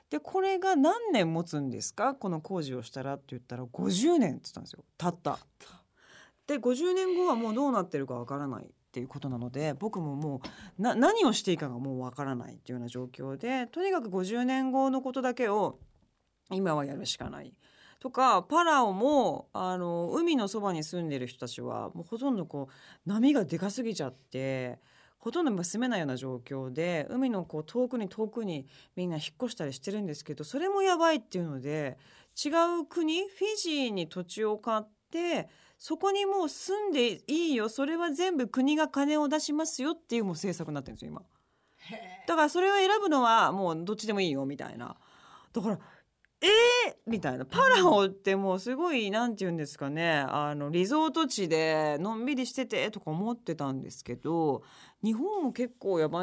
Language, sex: Japanese, female